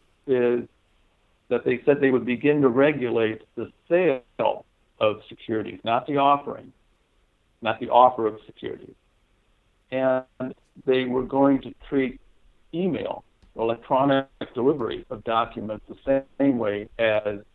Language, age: English, 60-79